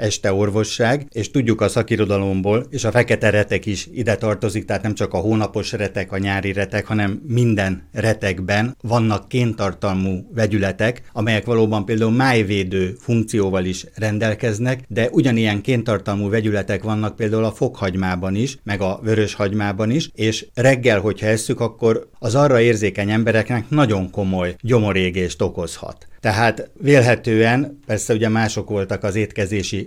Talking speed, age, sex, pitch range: 140 wpm, 50-69, male, 100-115 Hz